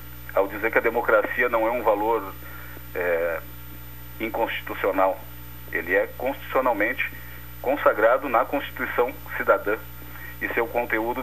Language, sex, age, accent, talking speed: Portuguese, male, 40-59, Brazilian, 105 wpm